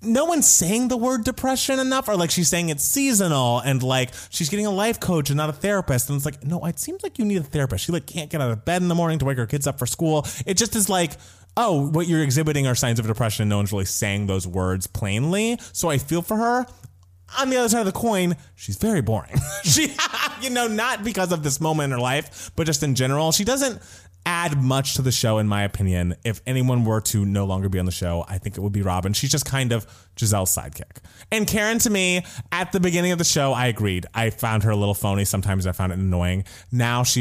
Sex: male